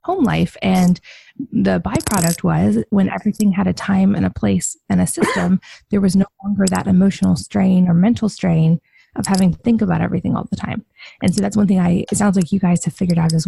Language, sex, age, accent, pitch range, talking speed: English, female, 20-39, American, 180-205 Hz, 225 wpm